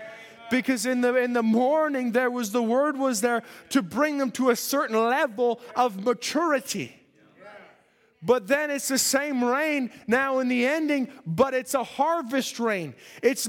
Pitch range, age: 250-290 Hz, 20-39